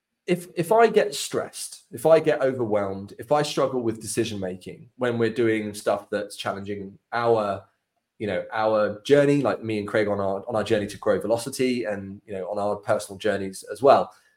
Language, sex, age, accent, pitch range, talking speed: English, male, 20-39, British, 105-135 Hz, 195 wpm